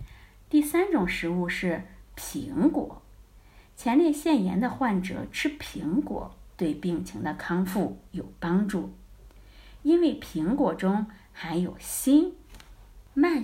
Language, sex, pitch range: Chinese, female, 180-270 Hz